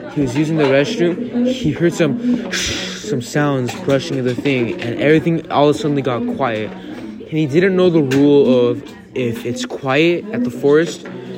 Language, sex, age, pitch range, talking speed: English, male, 20-39, 125-190 Hz, 185 wpm